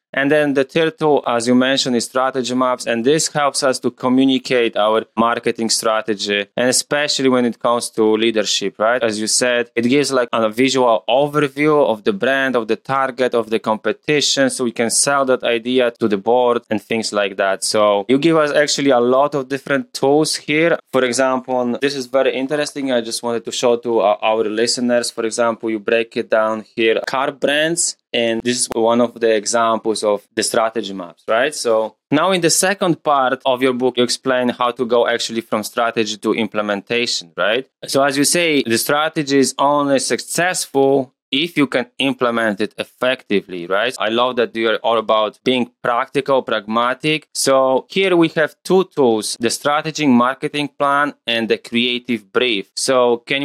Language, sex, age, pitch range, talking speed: English, male, 20-39, 115-140 Hz, 185 wpm